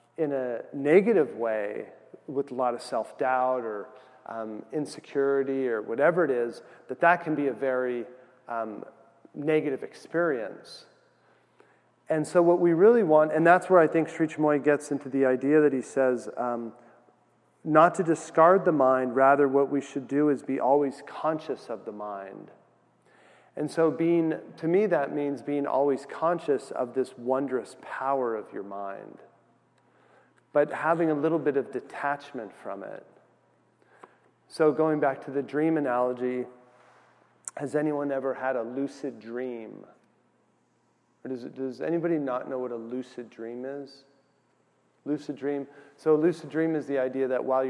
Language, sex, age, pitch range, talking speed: English, male, 40-59, 125-150 Hz, 160 wpm